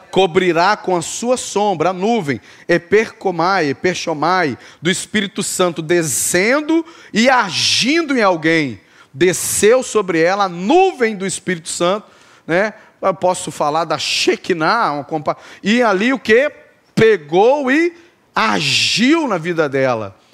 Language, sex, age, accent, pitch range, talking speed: Portuguese, male, 40-59, Brazilian, 155-210 Hz, 125 wpm